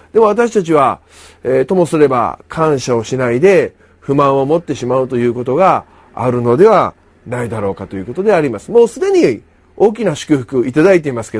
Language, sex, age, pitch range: Japanese, male, 40-59, 115-155 Hz